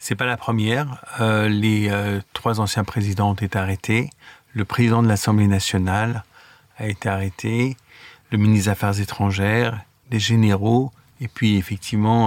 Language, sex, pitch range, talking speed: French, male, 105-120 Hz, 150 wpm